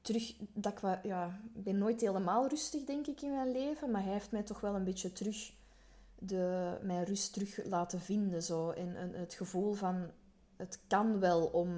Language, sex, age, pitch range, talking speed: Dutch, female, 20-39, 185-230 Hz, 185 wpm